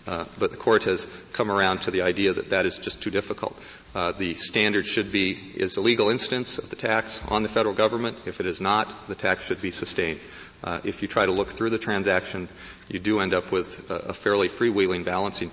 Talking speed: 230 wpm